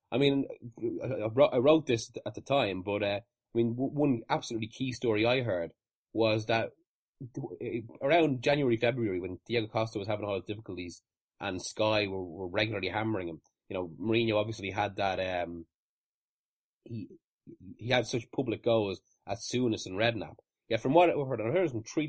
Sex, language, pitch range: male, English, 105-135 Hz